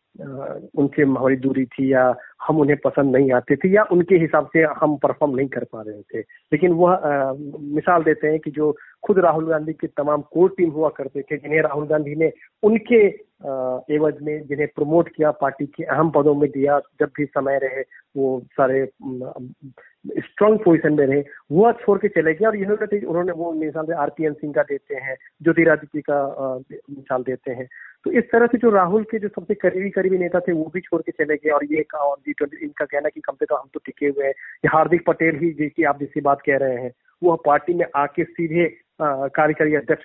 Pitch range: 135-170 Hz